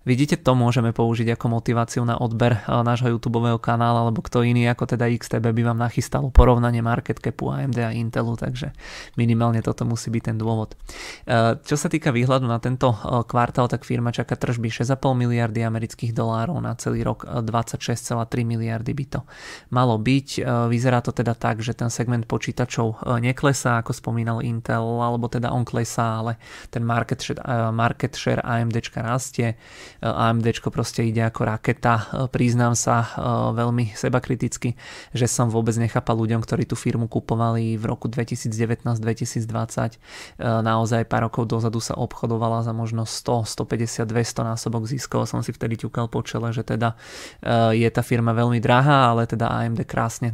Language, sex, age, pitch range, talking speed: Czech, male, 20-39, 115-125 Hz, 155 wpm